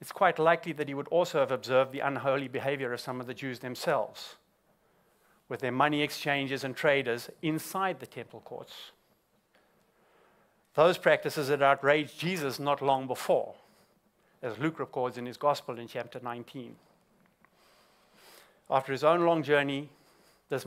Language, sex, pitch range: English, male, 130-160 Hz